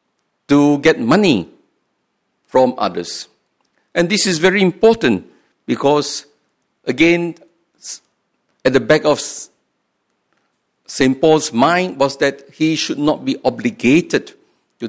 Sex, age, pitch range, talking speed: male, 50-69, 130-170 Hz, 110 wpm